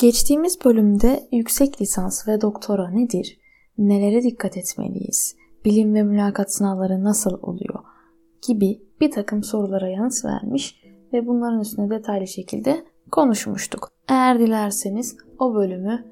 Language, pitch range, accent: Turkish, 200-270 Hz, native